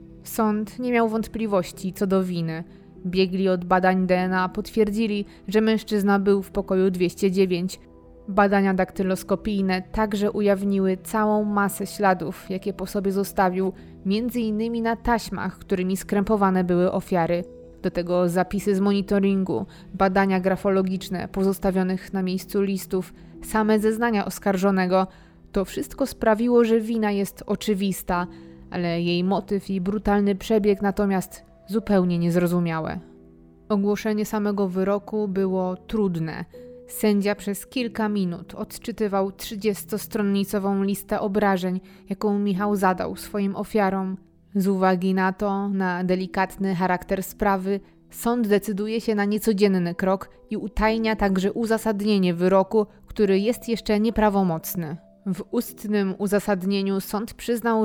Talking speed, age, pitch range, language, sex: 115 wpm, 20-39, 185-215 Hz, Polish, female